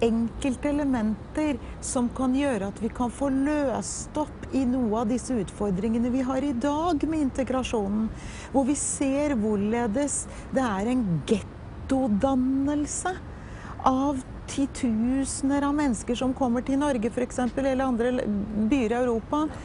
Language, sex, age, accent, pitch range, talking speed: English, female, 40-59, Swedish, 220-285 Hz, 135 wpm